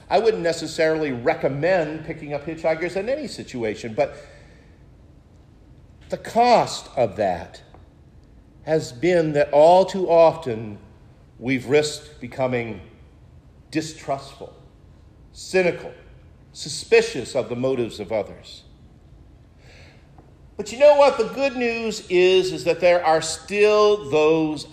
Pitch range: 135-195 Hz